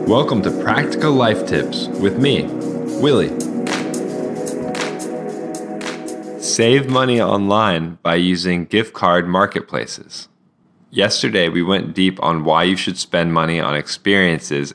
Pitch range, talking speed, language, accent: 85-105 Hz, 115 wpm, English, American